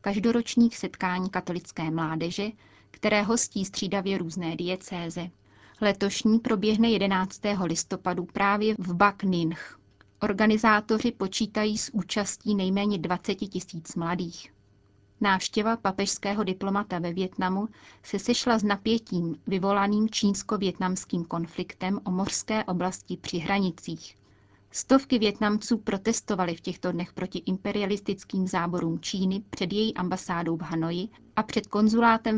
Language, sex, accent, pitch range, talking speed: Czech, female, native, 180-210 Hz, 115 wpm